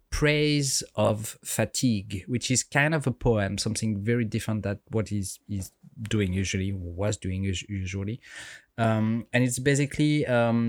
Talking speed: 145 wpm